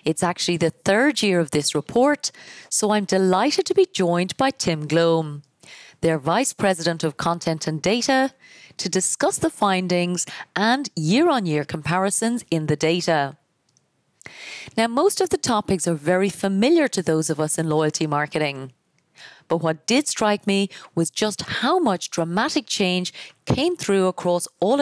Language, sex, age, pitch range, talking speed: English, female, 30-49, 165-225 Hz, 155 wpm